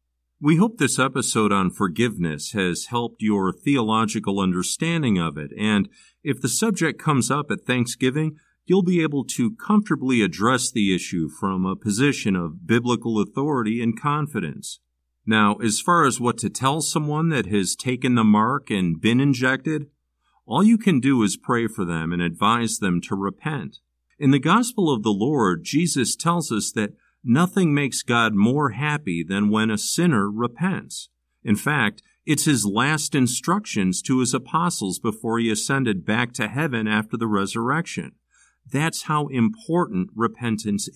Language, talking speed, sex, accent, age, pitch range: English, 160 wpm, male, American, 40-59, 100-145 Hz